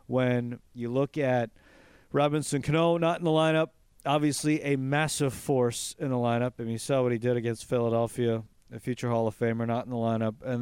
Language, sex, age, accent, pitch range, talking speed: English, male, 40-59, American, 120-145 Hz, 205 wpm